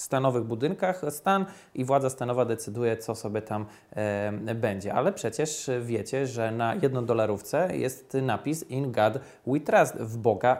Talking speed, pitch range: 140 wpm, 120-160 Hz